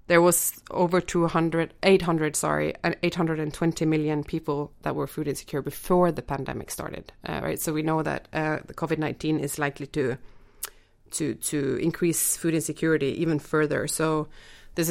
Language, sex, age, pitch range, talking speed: English, female, 20-39, 150-170 Hz, 180 wpm